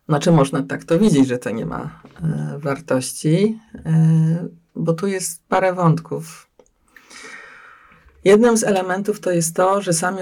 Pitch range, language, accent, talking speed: 155-190 Hz, Polish, native, 135 wpm